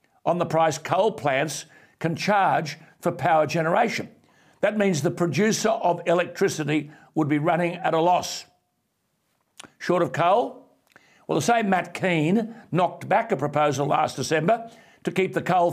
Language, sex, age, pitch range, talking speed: English, male, 60-79, 160-195 Hz, 155 wpm